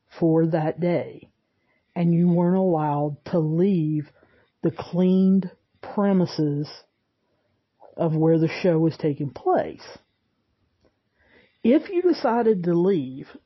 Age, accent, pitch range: 40-59, American, 155-180 Hz